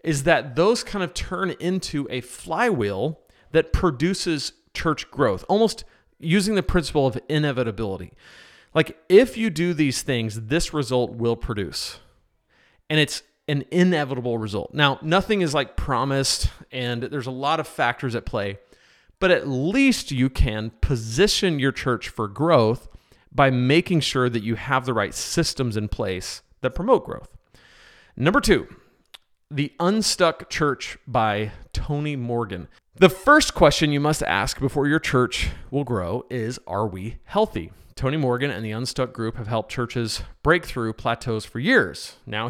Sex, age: male, 40-59